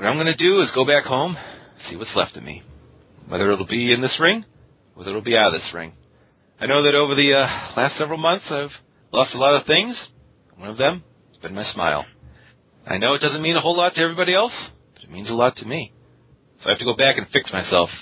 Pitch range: 115-150 Hz